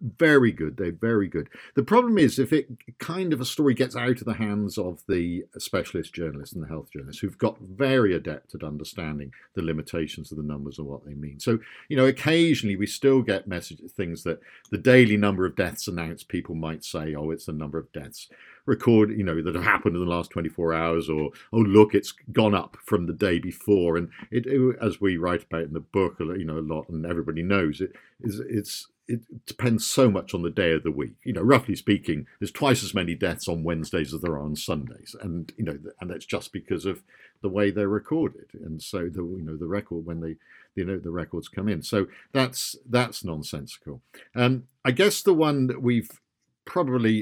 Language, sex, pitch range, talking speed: English, male, 85-120 Hz, 220 wpm